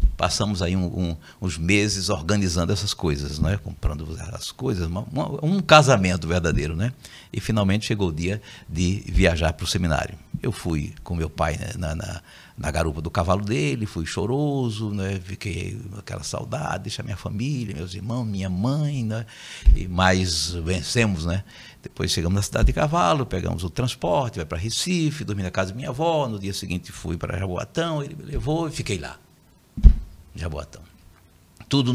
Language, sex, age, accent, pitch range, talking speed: Portuguese, male, 60-79, Brazilian, 90-130 Hz, 170 wpm